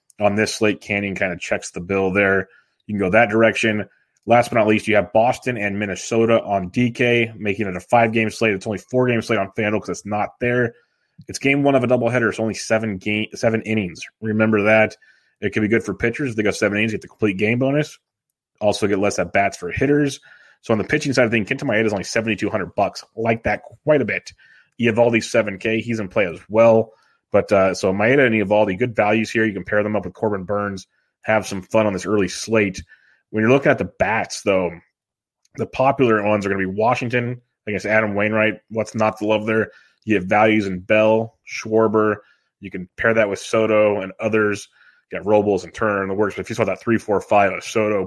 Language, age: English, 20-39